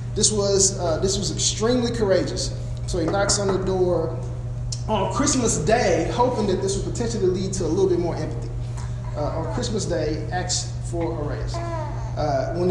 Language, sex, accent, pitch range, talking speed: English, male, American, 115-140 Hz, 180 wpm